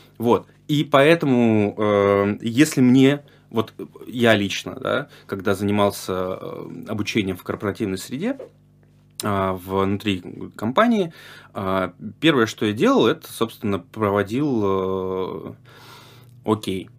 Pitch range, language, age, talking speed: 100-135 Hz, Russian, 20-39, 90 wpm